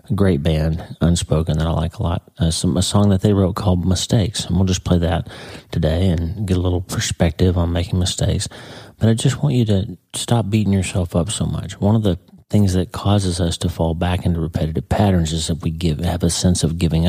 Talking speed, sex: 230 wpm, male